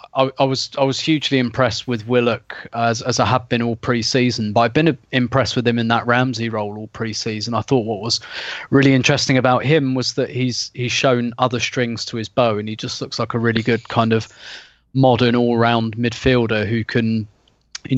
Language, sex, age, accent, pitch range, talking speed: English, male, 20-39, British, 115-130 Hz, 210 wpm